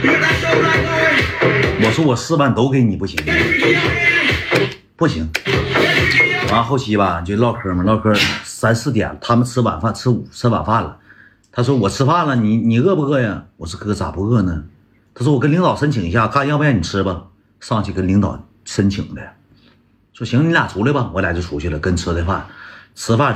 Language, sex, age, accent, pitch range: Chinese, male, 50-69, native, 95-125 Hz